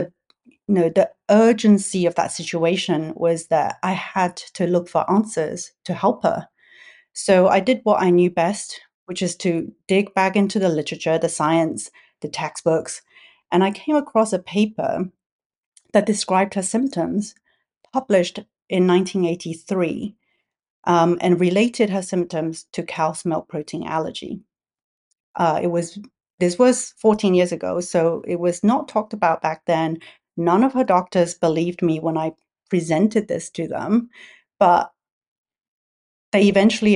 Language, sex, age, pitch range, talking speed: English, female, 30-49, 170-210 Hz, 150 wpm